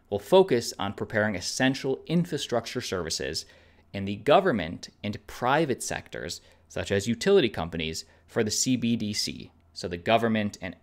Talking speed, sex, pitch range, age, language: 135 wpm, male, 100-130 Hz, 20-39, English